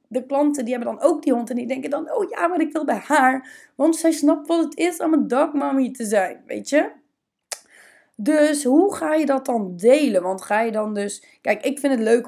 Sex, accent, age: female, Dutch, 20-39